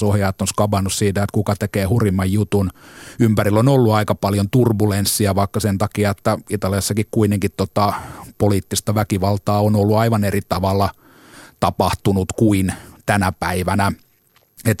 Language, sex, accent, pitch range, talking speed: Finnish, male, native, 100-110 Hz, 140 wpm